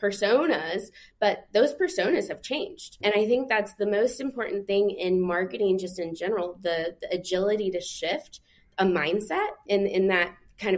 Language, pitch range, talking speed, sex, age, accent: English, 185-235 Hz, 165 wpm, female, 20-39, American